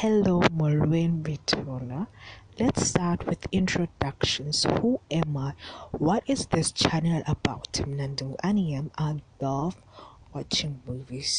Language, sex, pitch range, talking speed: English, female, 130-160 Hz, 90 wpm